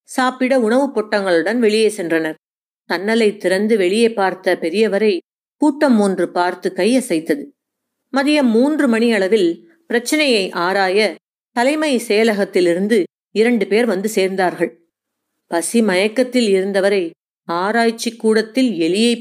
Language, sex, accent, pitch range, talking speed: Tamil, female, native, 190-255 Hz, 95 wpm